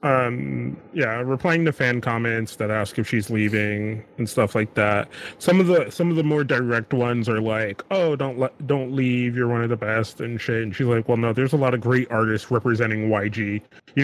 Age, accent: 30-49, American